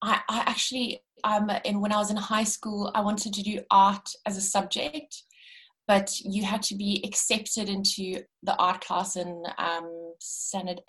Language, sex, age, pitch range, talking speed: English, female, 20-39, 170-220 Hz, 170 wpm